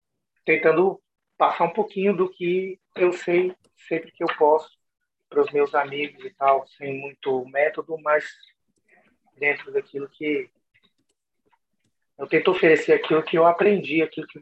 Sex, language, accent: male, Portuguese, Brazilian